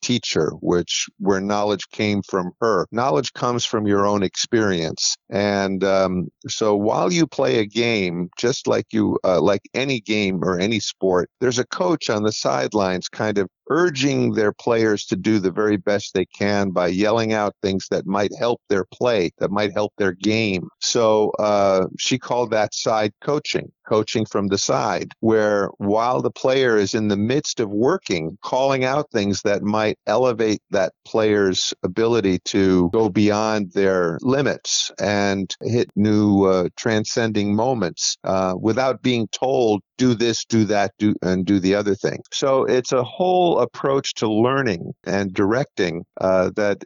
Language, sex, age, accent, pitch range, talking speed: English, male, 50-69, American, 95-115 Hz, 165 wpm